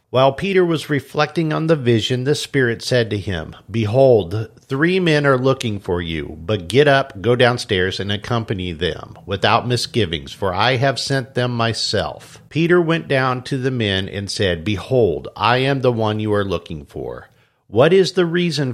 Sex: male